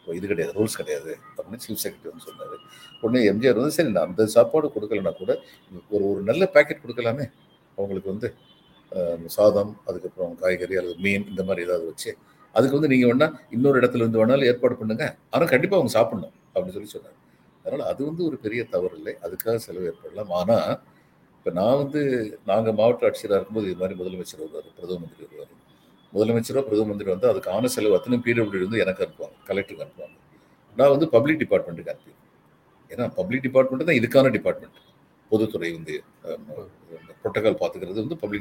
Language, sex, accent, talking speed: Tamil, male, native, 160 wpm